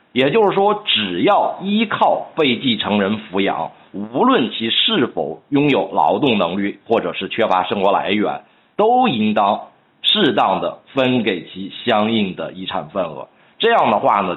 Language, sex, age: Chinese, male, 50-69